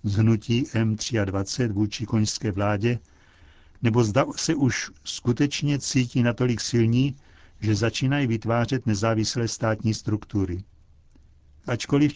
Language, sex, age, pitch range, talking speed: Czech, male, 60-79, 100-125 Hz, 95 wpm